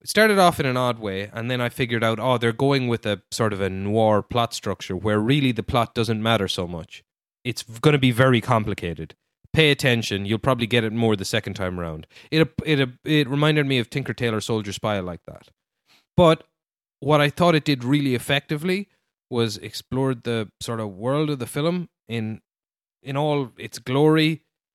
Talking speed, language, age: 200 wpm, English, 20-39